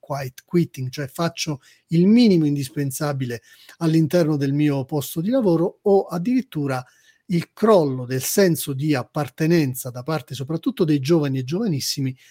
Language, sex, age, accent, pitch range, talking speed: Italian, male, 40-59, native, 140-170 Hz, 135 wpm